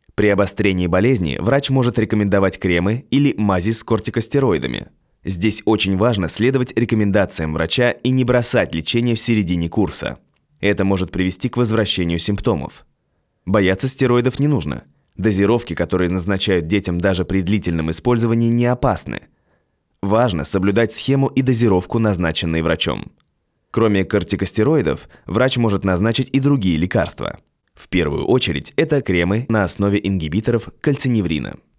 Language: Russian